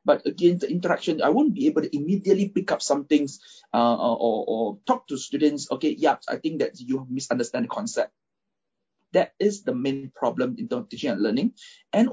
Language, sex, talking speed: English, male, 195 wpm